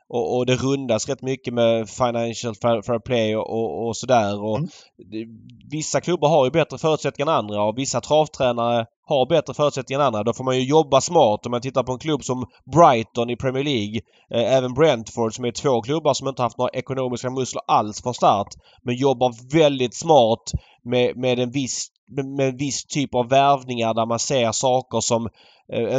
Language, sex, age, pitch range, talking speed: Swedish, male, 20-39, 115-130 Hz, 195 wpm